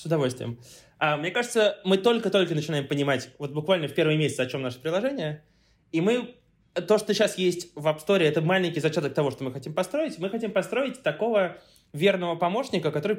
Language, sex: Russian, male